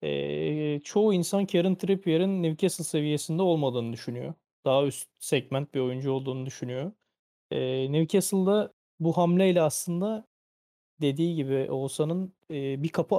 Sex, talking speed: male, 125 wpm